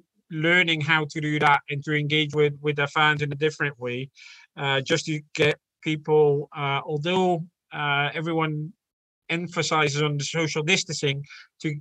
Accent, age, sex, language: British, 30-49, male, English